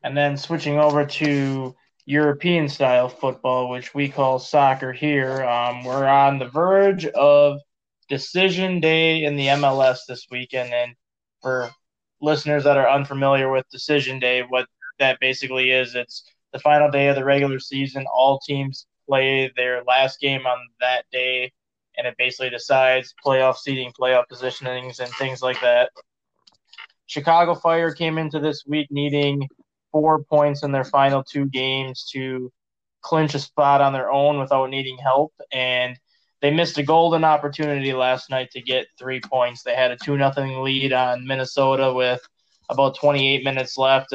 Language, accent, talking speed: English, American, 160 wpm